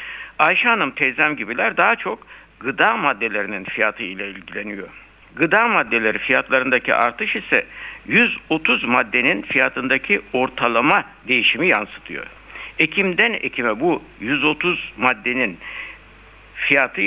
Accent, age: native, 60-79